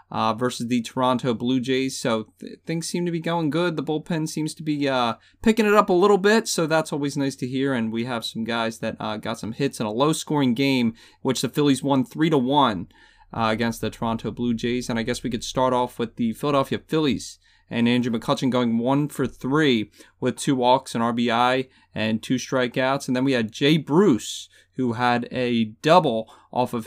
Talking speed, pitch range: 215 wpm, 115-140 Hz